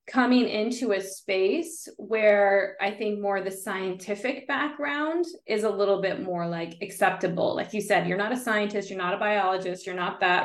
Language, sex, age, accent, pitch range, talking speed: English, female, 20-39, American, 185-215 Hz, 190 wpm